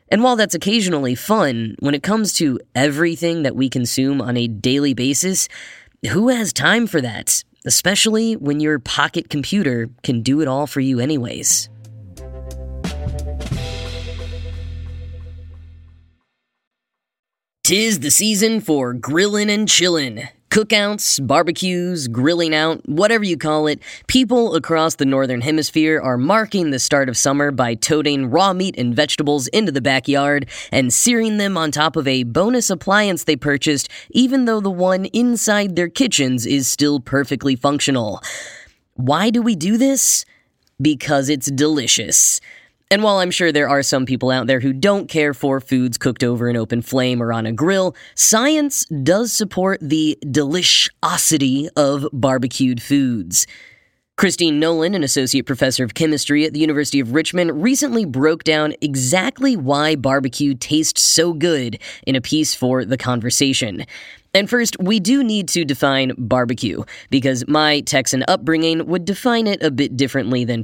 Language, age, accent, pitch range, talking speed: English, 10-29, American, 130-180 Hz, 150 wpm